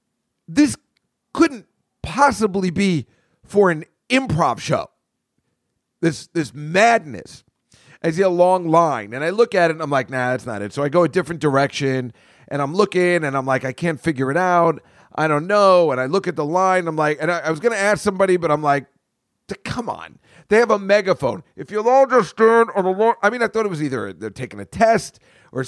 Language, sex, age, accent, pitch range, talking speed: English, male, 40-59, American, 160-220 Hz, 220 wpm